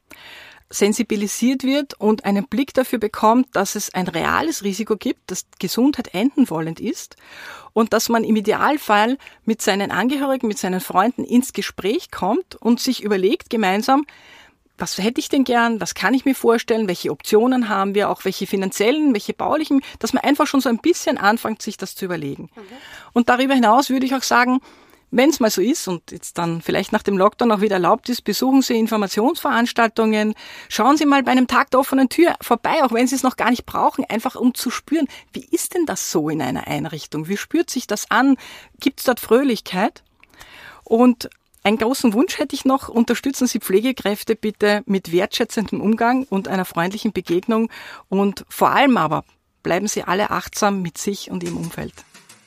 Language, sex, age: German, female, 40-59